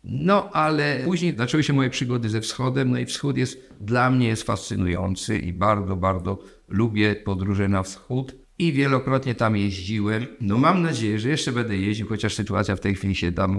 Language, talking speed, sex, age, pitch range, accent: Polish, 185 wpm, male, 50-69, 105-130 Hz, native